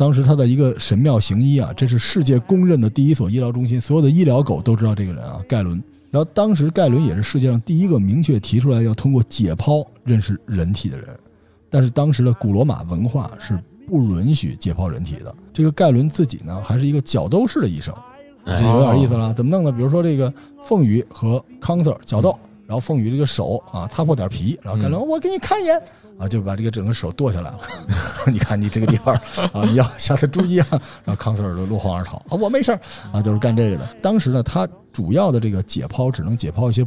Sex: male